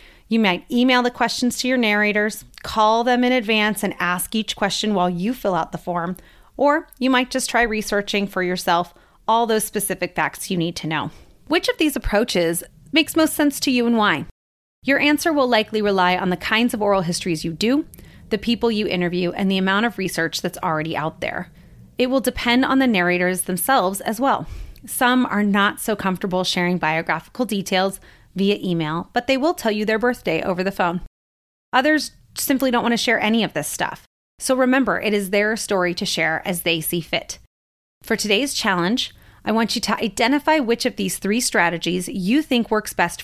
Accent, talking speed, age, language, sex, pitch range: American, 200 wpm, 30-49, English, female, 180-245 Hz